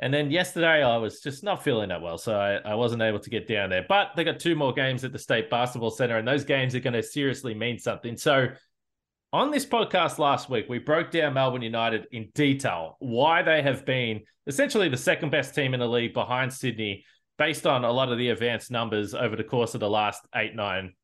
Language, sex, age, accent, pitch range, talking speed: English, male, 20-39, Australian, 120-155 Hz, 235 wpm